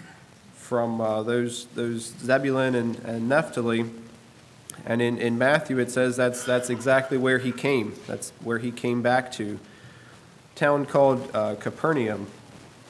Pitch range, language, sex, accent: 120-135 Hz, English, male, American